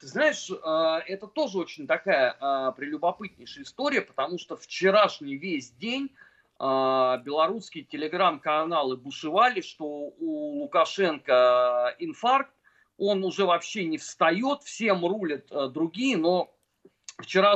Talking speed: 105 wpm